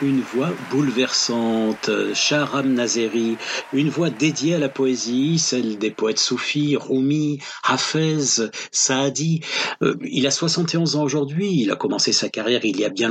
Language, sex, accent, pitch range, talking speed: French, male, French, 125-160 Hz, 150 wpm